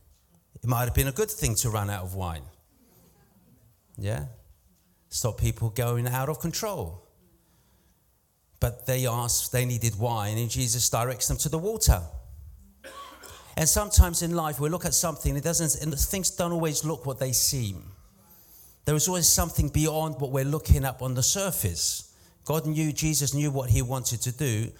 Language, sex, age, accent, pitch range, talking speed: English, male, 40-59, British, 110-170 Hz, 170 wpm